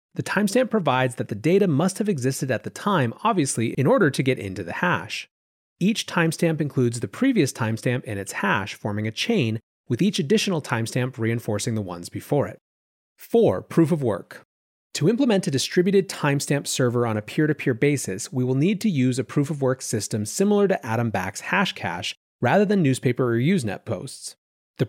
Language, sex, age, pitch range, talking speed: English, male, 30-49, 115-170 Hz, 190 wpm